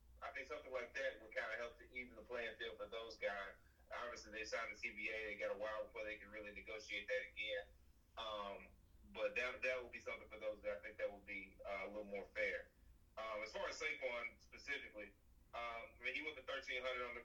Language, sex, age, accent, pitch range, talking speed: English, male, 30-49, American, 95-120 Hz, 240 wpm